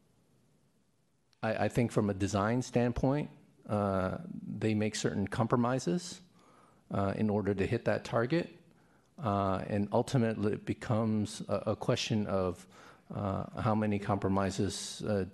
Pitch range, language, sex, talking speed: 95-115 Hz, English, male, 125 wpm